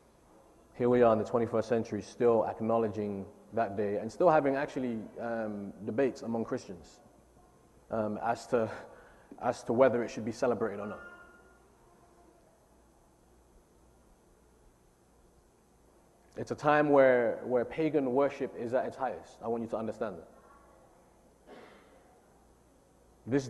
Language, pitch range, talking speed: English, 115-140 Hz, 125 wpm